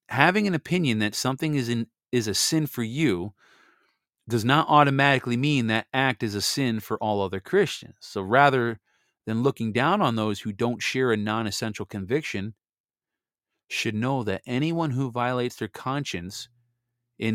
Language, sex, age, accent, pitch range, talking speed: English, male, 30-49, American, 105-130 Hz, 165 wpm